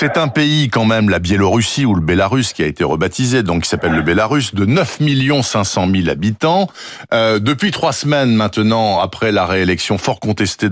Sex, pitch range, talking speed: male, 100-135 Hz, 190 wpm